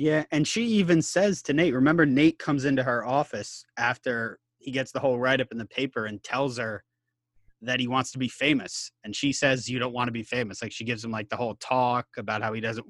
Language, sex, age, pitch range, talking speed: English, male, 20-39, 110-135 Hz, 245 wpm